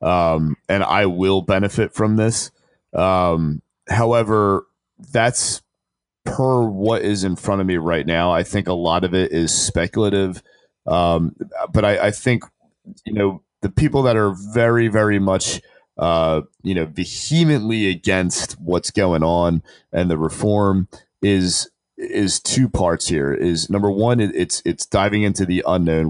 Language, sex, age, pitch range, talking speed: English, male, 30-49, 85-105 Hz, 155 wpm